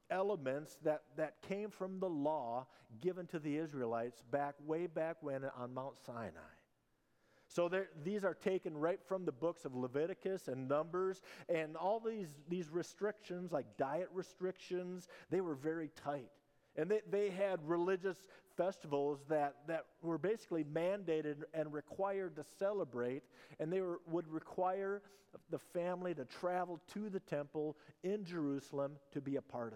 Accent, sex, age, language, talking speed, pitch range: American, male, 50-69, English, 150 wpm, 140-180 Hz